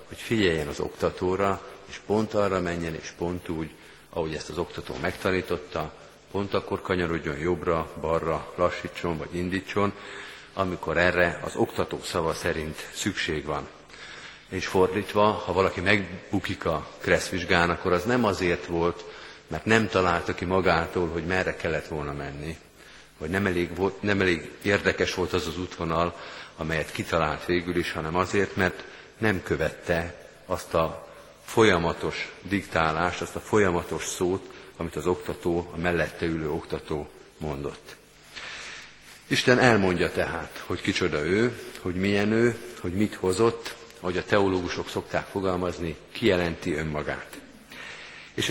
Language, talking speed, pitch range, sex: Hungarian, 135 wpm, 85-100 Hz, male